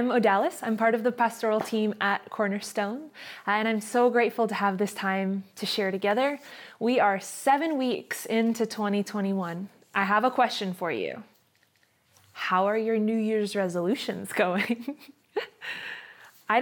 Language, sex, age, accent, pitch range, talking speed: English, female, 20-39, American, 195-240 Hz, 150 wpm